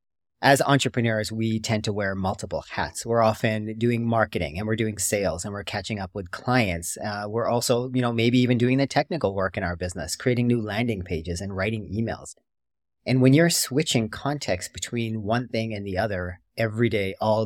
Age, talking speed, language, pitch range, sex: 40-59, 195 wpm, English, 95-120 Hz, male